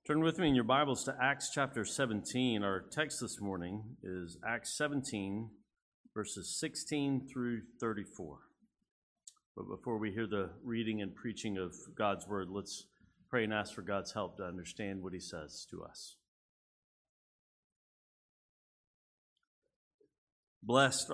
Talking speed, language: 135 wpm, English